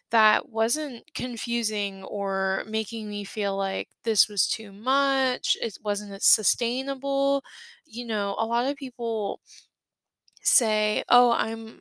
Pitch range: 200-235 Hz